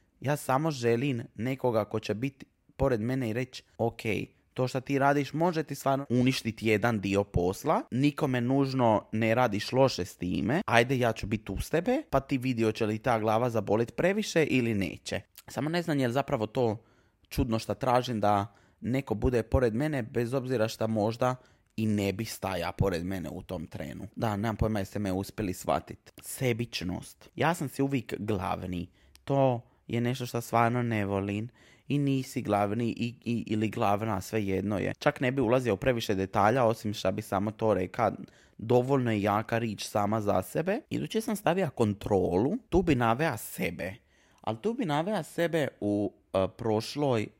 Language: Croatian